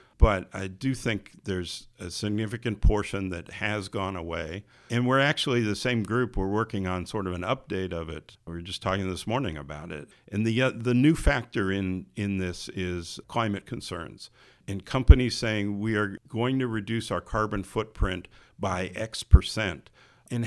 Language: English